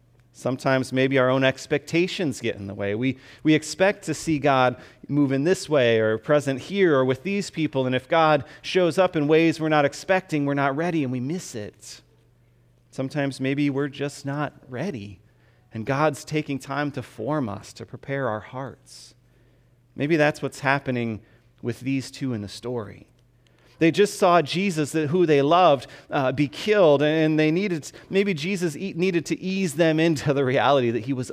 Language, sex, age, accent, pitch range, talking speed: English, male, 30-49, American, 120-150 Hz, 185 wpm